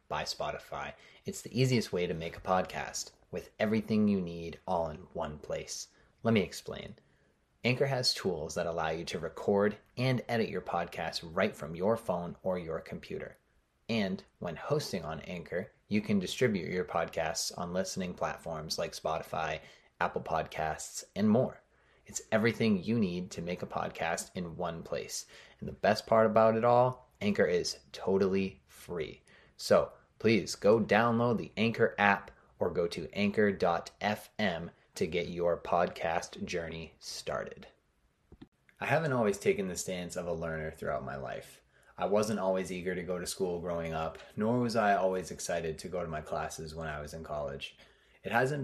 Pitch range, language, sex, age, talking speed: 80-110 Hz, English, male, 30-49, 170 wpm